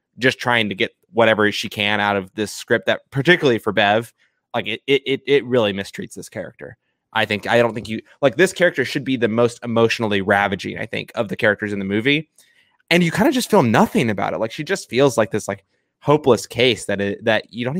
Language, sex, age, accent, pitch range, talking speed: English, male, 20-39, American, 105-125 Hz, 235 wpm